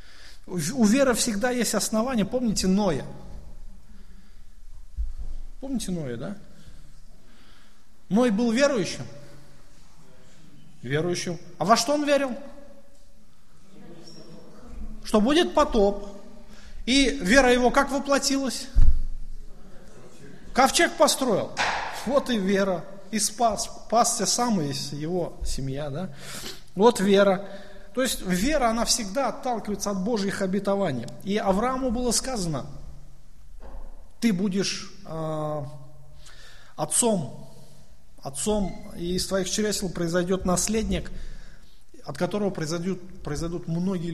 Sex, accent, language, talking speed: male, native, Russian, 95 wpm